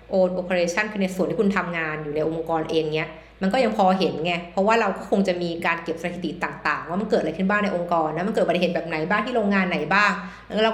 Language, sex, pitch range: Thai, female, 165-210 Hz